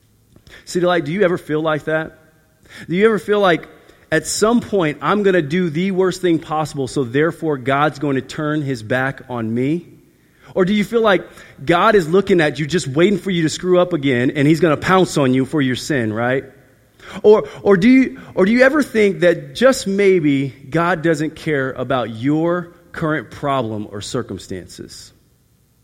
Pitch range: 125-180 Hz